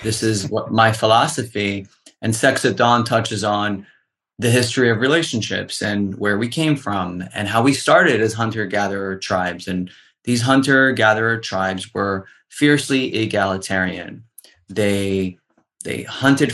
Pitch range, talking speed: 105-125 Hz, 135 wpm